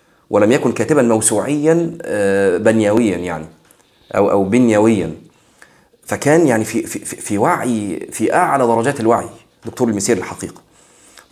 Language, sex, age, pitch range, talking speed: Arabic, male, 30-49, 105-130 Hz, 115 wpm